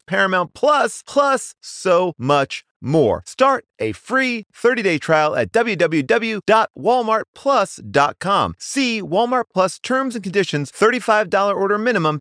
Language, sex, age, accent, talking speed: English, male, 30-49, American, 115 wpm